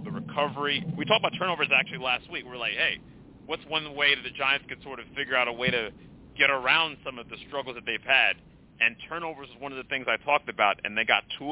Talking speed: 255 wpm